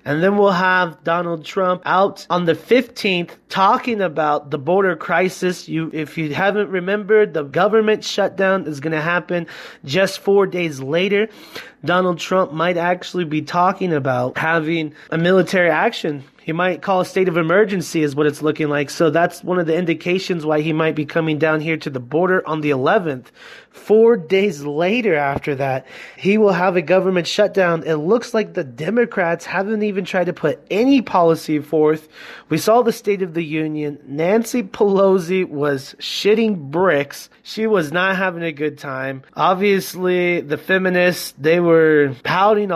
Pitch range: 155-195 Hz